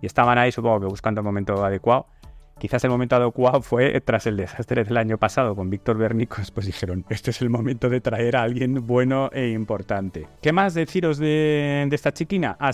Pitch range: 100-135 Hz